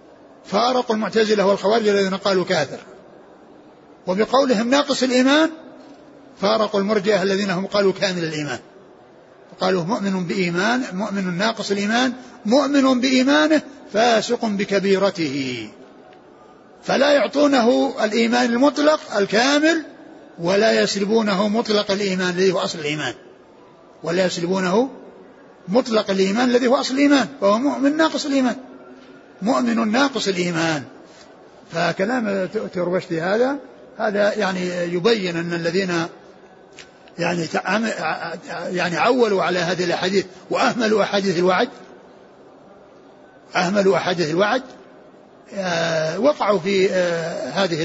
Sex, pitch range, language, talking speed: male, 180-245 Hz, Arabic, 95 wpm